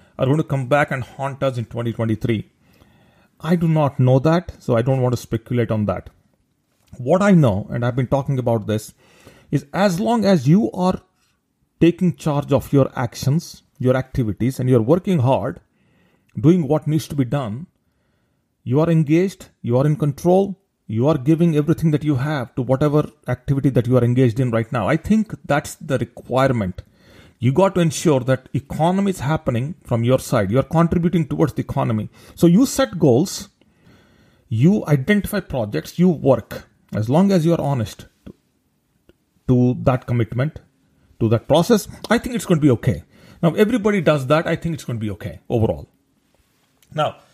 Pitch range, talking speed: 120-165 Hz, 180 wpm